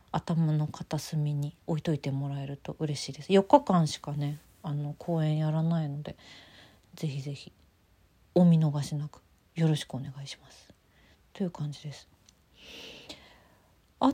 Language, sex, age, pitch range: Japanese, female, 40-59, 140-180 Hz